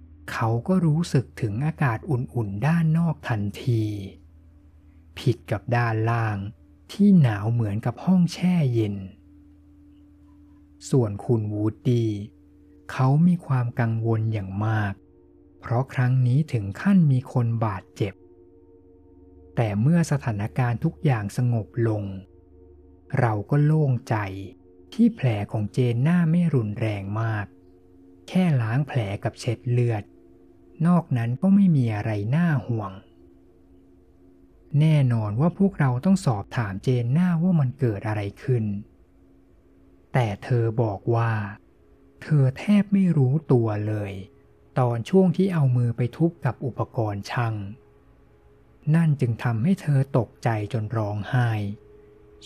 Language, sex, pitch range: Thai, male, 95-135 Hz